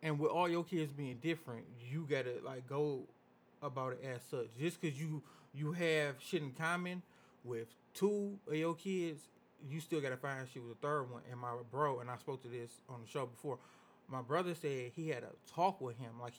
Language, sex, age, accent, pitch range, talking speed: English, male, 30-49, American, 125-160 Hz, 215 wpm